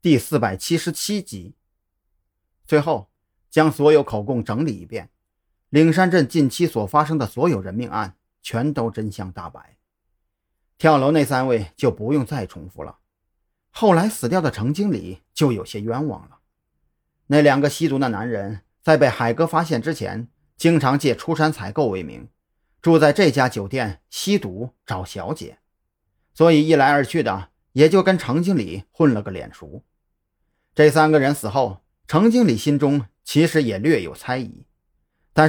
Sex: male